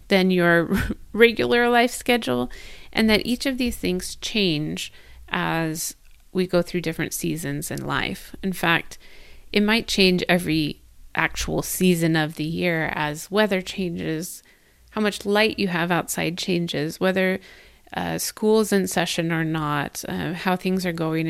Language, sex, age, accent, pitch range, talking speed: English, female, 30-49, American, 160-200 Hz, 150 wpm